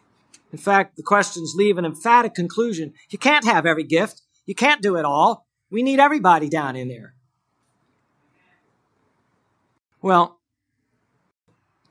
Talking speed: 130 wpm